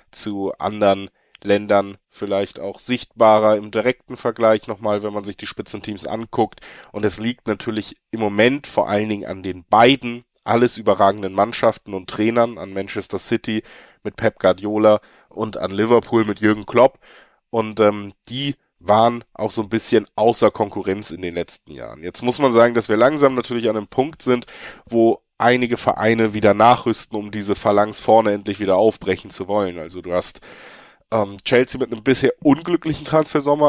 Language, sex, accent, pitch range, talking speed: German, male, German, 105-120 Hz, 170 wpm